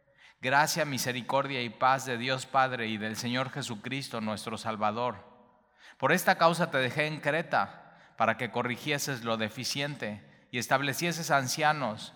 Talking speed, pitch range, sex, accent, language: 140 wpm, 120-150 Hz, male, Mexican, Spanish